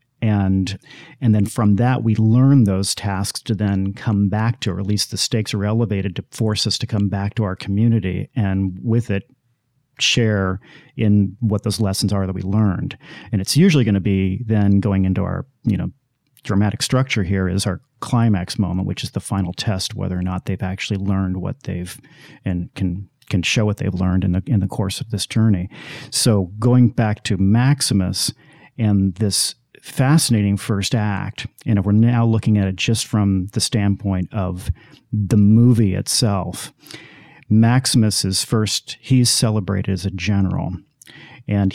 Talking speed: 175 wpm